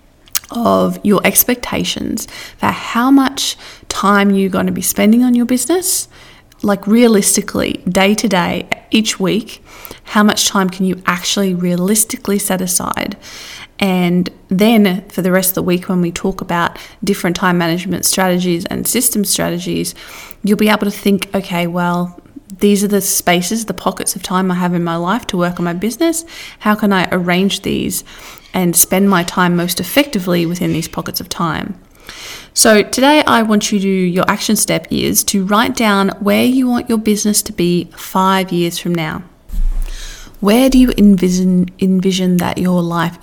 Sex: female